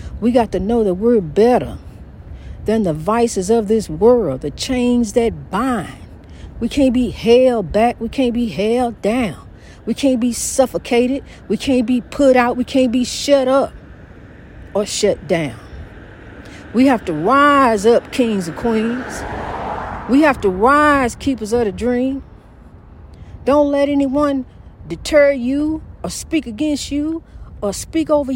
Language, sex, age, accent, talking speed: English, female, 60-79, American, 150 wpm